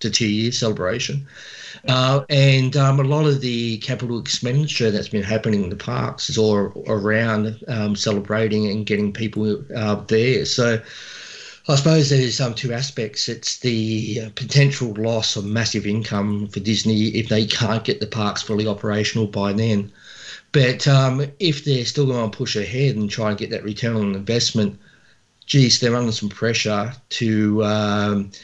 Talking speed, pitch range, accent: 170 wpm, 105-125 Hz, Australian